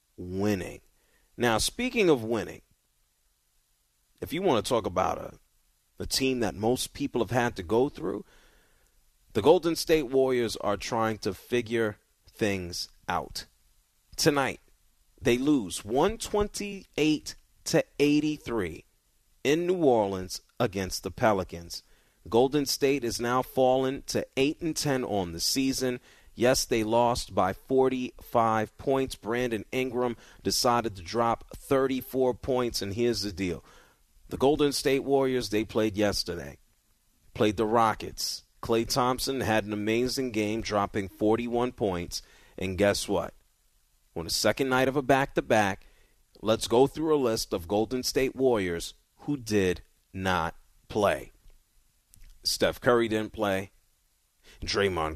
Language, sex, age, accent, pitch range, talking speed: English, male, 30-49, American, 95-130 Hz, 130 wpm